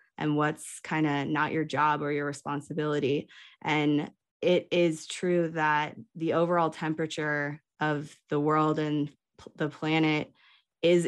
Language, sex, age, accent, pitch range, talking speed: English, female, 20-39, American, 145-160 Hz, 135 wpm